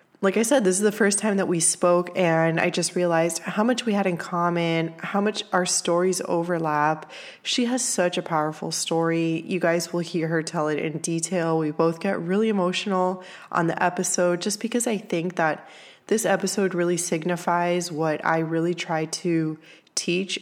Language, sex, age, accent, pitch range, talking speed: English, female, 20-39, American, 160-185 Hz, 190 wpm